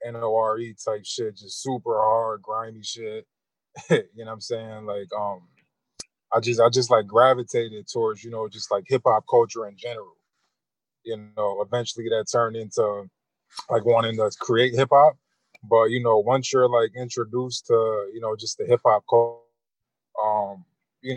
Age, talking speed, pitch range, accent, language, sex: 20-39, 165 wpm, 110-125 Hz, American, English, male